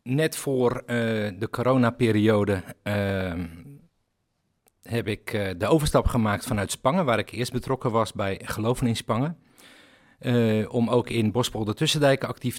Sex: male